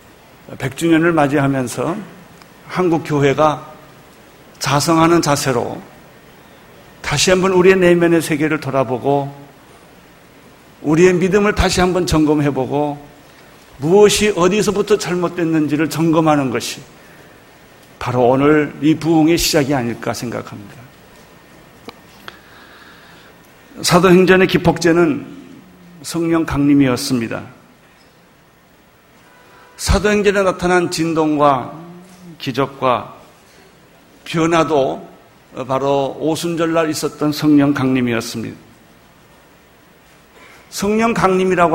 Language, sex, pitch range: Korean, male, 140-175 Hz